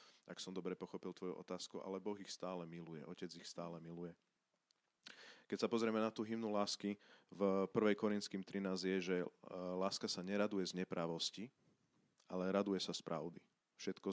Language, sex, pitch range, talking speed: Slovak, male, 90-105 Hz, 165 wpm